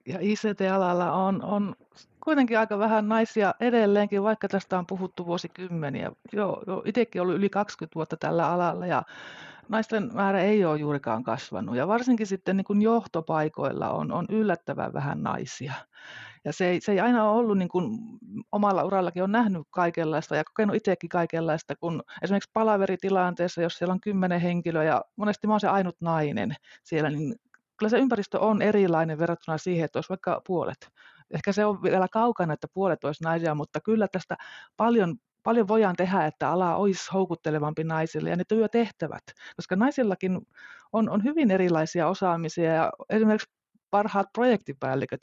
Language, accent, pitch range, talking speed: Finnish, native, 165-215 Hz, 160 wpm